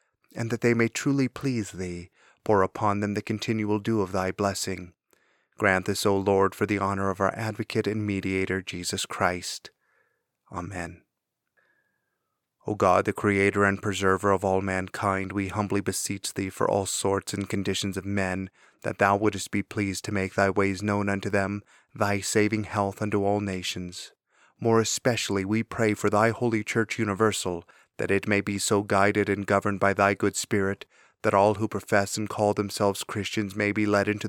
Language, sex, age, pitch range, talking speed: English, male, 30-49, 100-110 Hz, 180 wpm